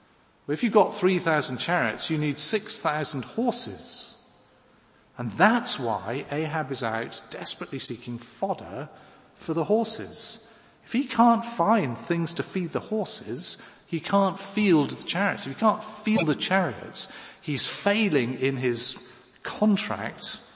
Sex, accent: male, British